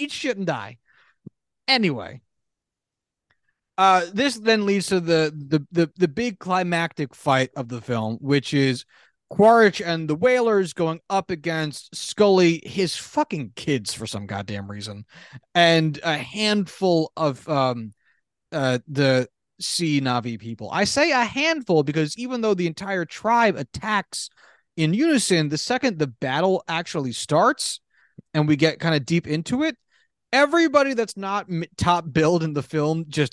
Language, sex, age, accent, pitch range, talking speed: English, male, 30-49, American, 140-195 Hz, 150 wpm